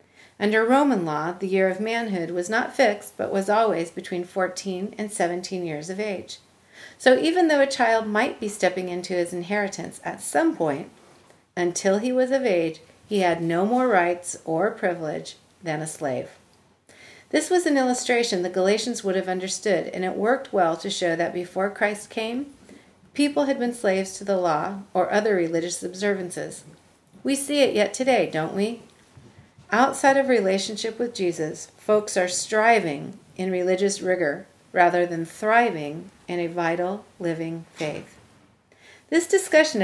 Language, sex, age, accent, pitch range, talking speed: English, female, 40-59, American, 175-230 Hz, 160 wpm